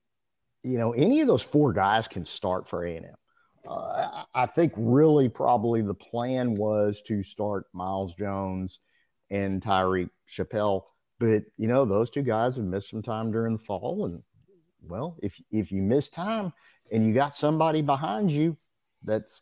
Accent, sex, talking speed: American, male, 165 wpm